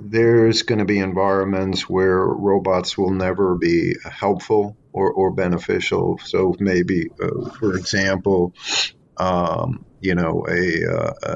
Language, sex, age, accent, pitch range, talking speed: English, male, 50-69, American, 90-100 Hz, 125 wpm